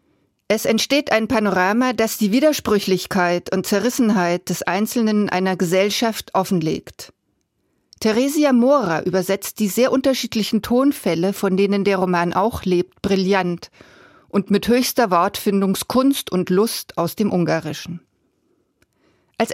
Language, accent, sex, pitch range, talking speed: German, German, female, 185-235 Hz, 115 wpm